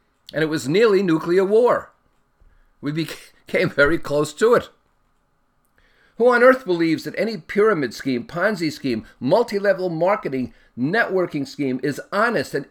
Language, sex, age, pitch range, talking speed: English, male, 50-69, 150-205 Hz, 135 wpm